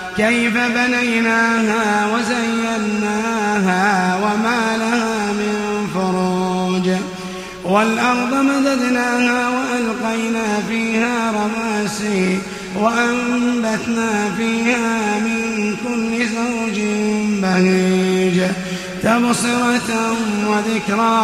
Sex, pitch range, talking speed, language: male, 200-230 Hz, 55 wpm, Arabic